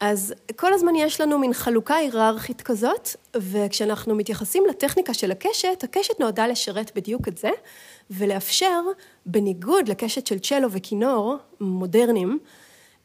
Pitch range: 210-295 Hz